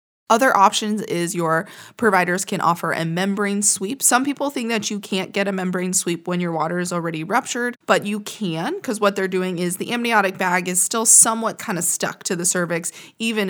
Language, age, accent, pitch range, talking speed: English, 20-39, American, 165-205 Hz, 210 wpm